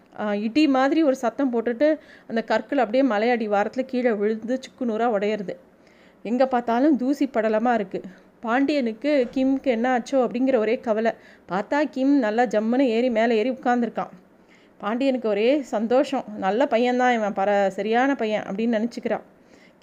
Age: 30-49